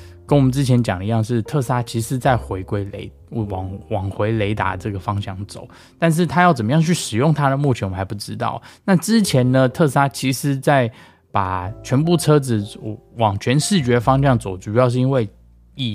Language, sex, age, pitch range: Chinese, male, 20-39, 100-125 Hz